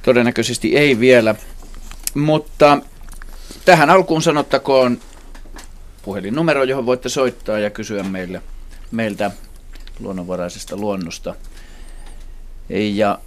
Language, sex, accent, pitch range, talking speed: Finnish, male, native, 90-125 Hz, 75 wpm